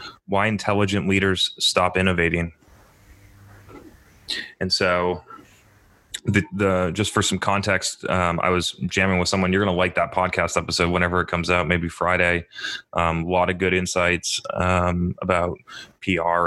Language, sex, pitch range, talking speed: English, male, 85-95 Hz, 150 wpm